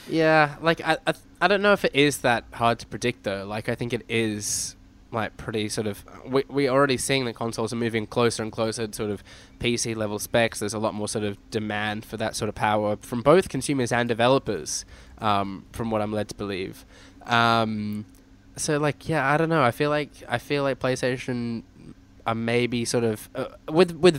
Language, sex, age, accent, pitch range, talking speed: English, male, 10-29, Australian, 105-130 Hz, 210 wpm